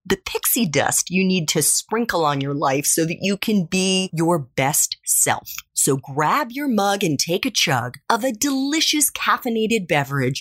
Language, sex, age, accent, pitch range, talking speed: English, female, 30-49, American, 150-245 Hz, 180 wpm